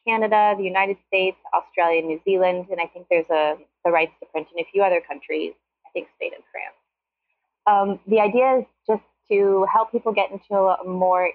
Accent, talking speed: American, 195 wpm